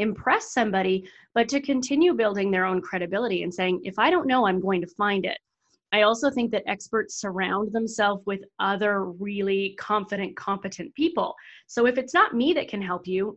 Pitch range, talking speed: 195-235 Hz, 190 wpm